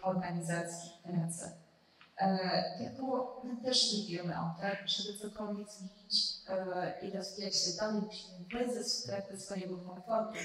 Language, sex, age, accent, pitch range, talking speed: Polish, female, 30-49, Italian, 190-240 Hz, 130 wpm